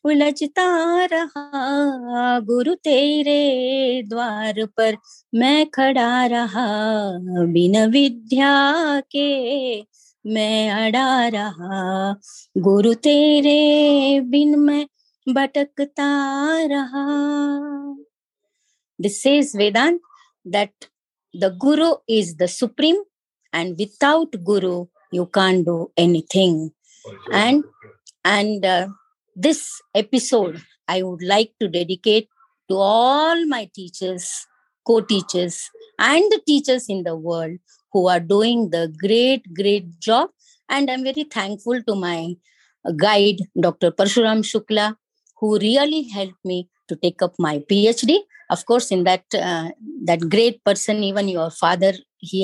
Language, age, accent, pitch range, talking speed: English, 20-39, Indian, 190-280 Hz, 105 wpm